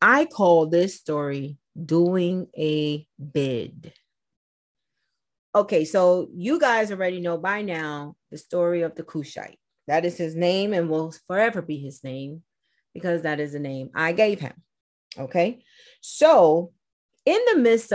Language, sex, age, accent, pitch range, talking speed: English, female, 30-49, American, 150-195 Hz, 145 wpm